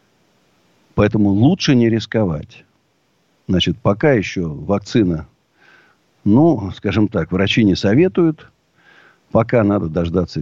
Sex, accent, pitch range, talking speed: male, native, 95-125 Hz, 100 wpm